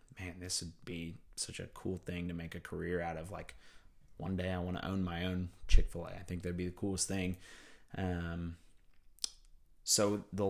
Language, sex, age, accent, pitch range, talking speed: English, male, 30-49, American, 85-95 Hz, 195 wpm